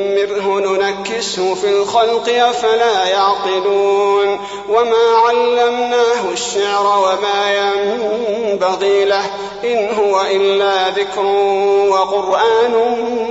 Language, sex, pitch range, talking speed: Arabic, male, 195-210 Hz, 70 wpm